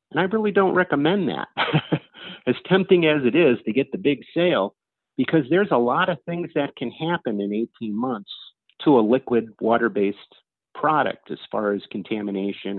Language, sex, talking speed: English, male, 175 wpm